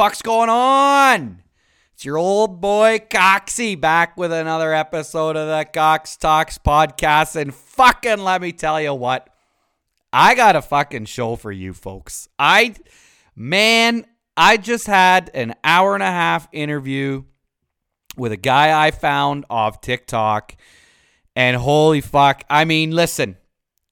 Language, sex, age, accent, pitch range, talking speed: English, male, 30-49, American, 120-185 Hz, 140 wpm